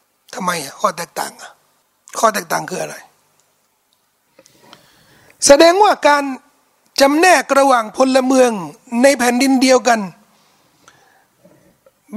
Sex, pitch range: male, 190-270 Hz